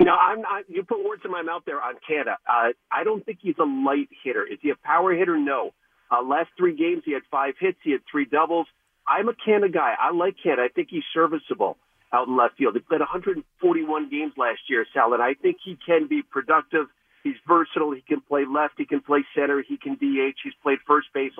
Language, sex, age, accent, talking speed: English, male, 50-69, American, 230 wpm